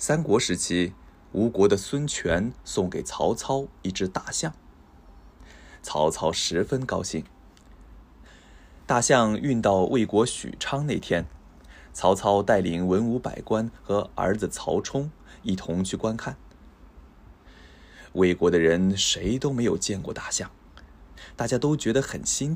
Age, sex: 20-39, male